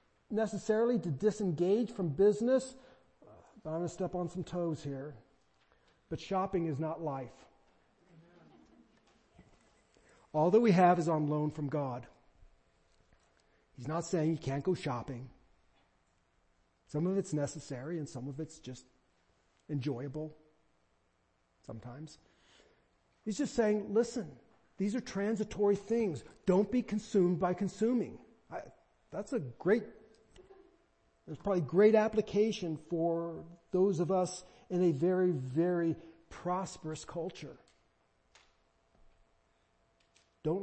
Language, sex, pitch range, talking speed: English, male, 130-190 Hz, 110 wpm